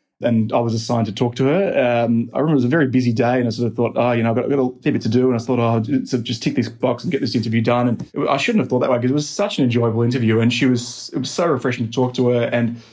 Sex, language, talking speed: male, English, 330 wpm